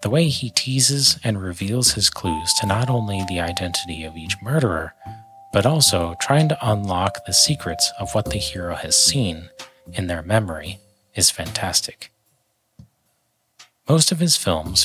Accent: American